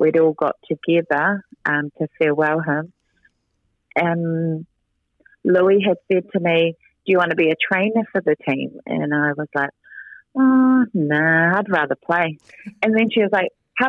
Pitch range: 155-205 Hz